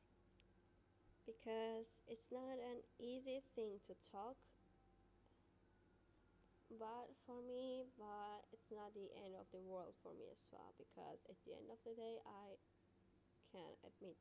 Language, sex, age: English, female, 20-39